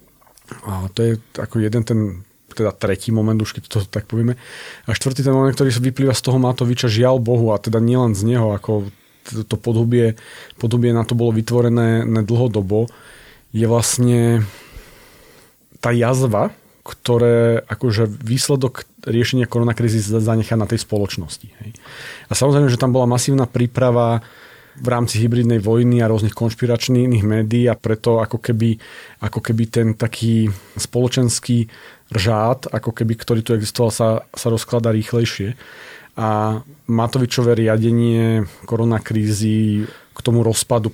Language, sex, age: Slovak, male, 40-59